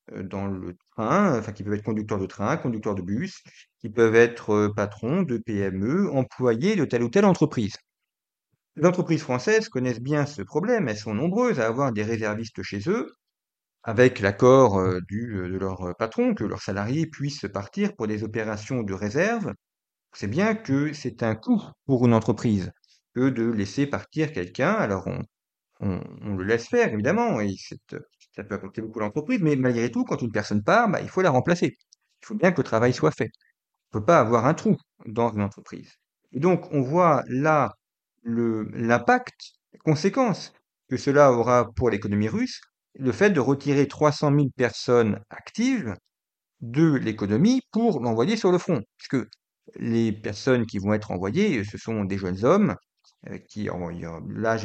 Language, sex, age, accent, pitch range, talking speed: French, male, 40-59, French, 105-155 Hz, 180 wpm